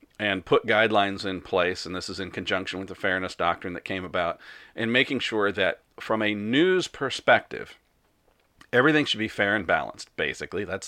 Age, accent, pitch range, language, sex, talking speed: 40-59, American, 100-120 Hz, English, male, 180 wpm